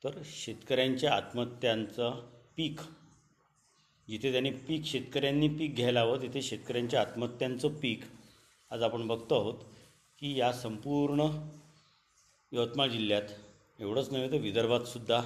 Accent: native